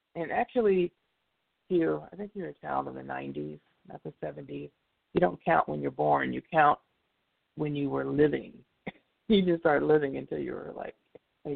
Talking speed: 180 wpm